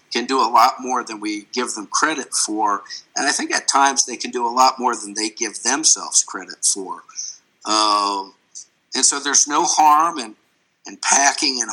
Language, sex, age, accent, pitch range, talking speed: English, male, 50-69, American, 115-145 Hz, 195 wpm